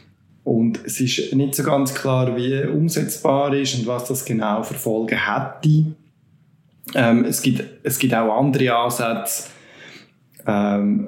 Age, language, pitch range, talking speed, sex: 20-39, German, 120-140 Hz, 145 wpm, male